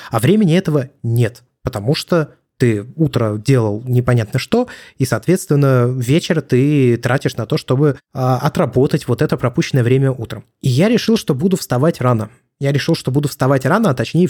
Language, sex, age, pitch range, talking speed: Russian, male, 20-39, 125-155 Hz, 170 wpm